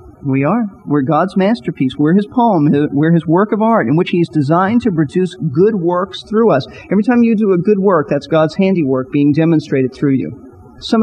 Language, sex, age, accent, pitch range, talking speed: English, male, 40-59, American, 150-205 Hz, 205 wpm